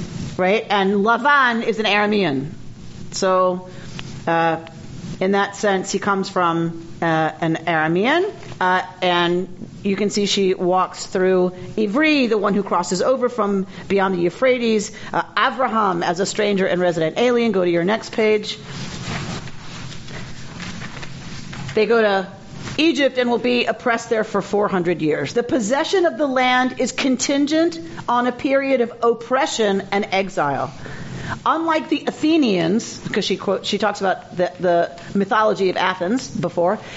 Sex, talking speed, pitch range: female, 145 wpm, 180-250 Hz